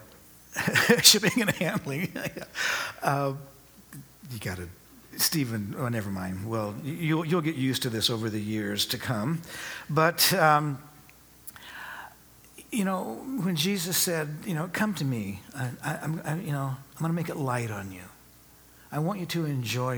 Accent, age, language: American, 60-79, English